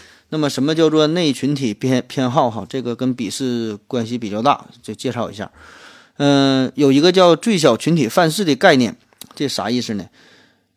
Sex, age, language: male, 30-49, Chinese